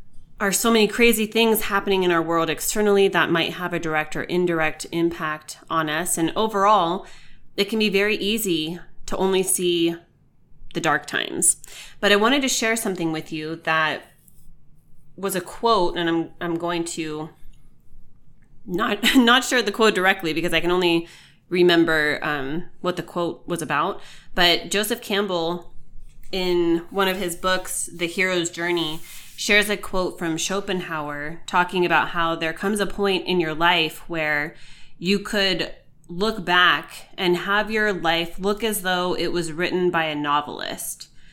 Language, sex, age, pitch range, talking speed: English, female, 30-49, 165-200 Hz, 160 wpm